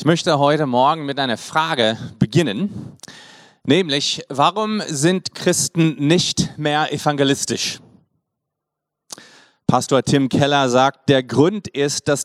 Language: German